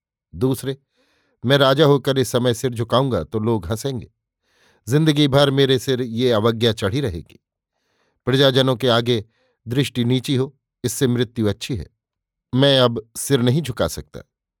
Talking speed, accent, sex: 145 wpm, native, male